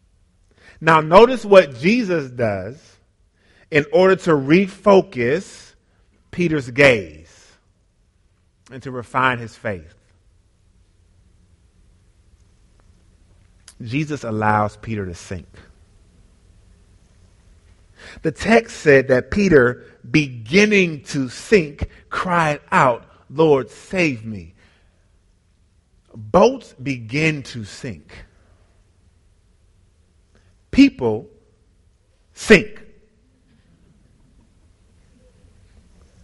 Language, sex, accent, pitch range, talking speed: English, male, American, 90-145 Hz, 65 wpm